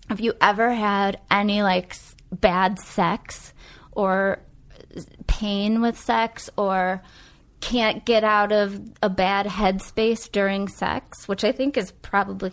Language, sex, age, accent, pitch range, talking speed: English, female, 20-39, American, 190-230 Hz, 130 wpm